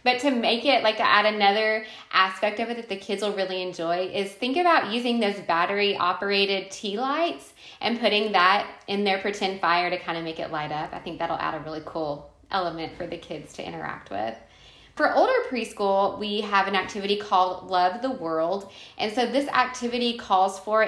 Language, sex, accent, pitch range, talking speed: English, female, American, 185-240 Hz, 205 wpm